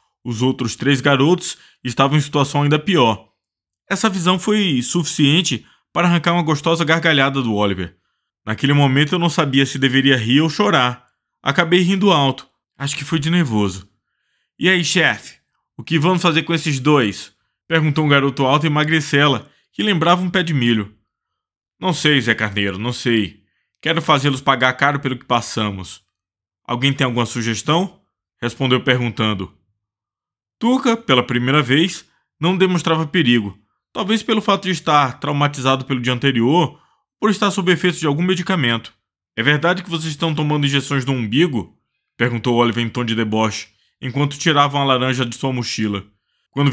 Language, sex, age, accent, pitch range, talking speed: Portuguese, male, 20-39, Brazilian, 115-170 Hz, 165 wpm